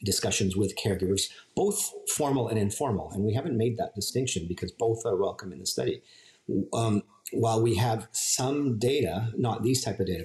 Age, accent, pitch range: 40-59, American, 95-115 Hz